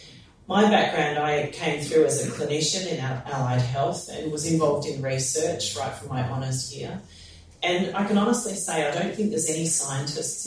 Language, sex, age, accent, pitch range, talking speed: English, female, 40-59, Australian, 125-165 Hz, 185 wpm